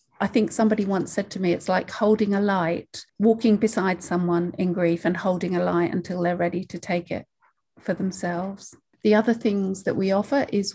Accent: British